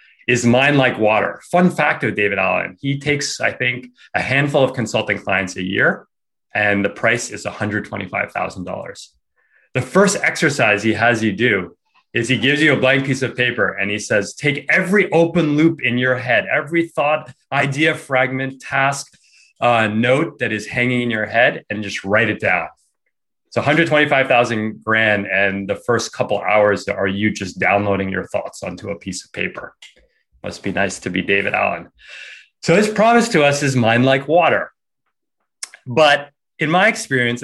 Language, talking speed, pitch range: English, 170 wpm, 105-140 Hz